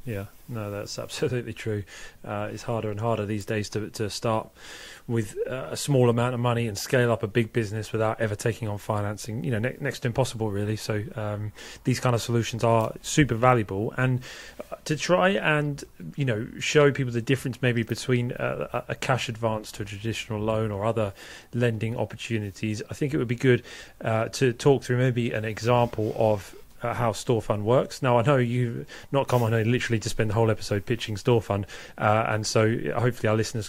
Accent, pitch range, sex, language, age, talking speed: British, 110-125 Hz, male, English, 30-49, 205 wpm